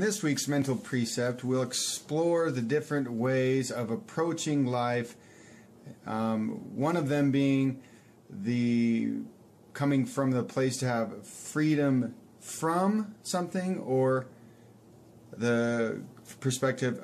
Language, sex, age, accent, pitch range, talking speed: English, male, 30-49, American, 115-135 Hz, 105 wpm